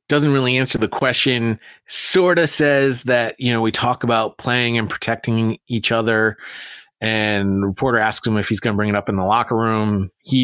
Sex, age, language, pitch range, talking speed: male, 30-49, English, 110-145 Hz, 200 wpm